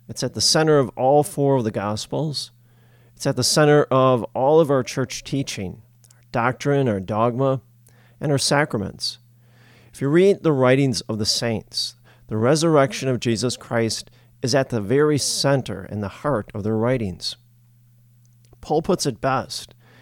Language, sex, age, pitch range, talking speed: English, male, 40-59, 120-135 Hz, 165 wpm